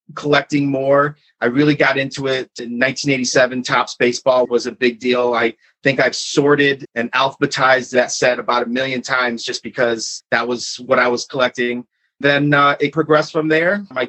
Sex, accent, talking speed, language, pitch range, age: male, American, 180 wpm, English, 130-150 Hz, 30-49